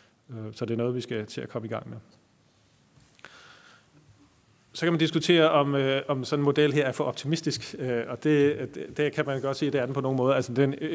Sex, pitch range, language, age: male, 120-145 Hz, Danish, 30-49